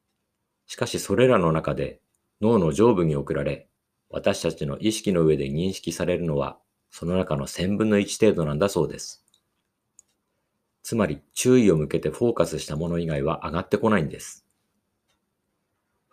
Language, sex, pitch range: Japanese, male, 80-100 Hz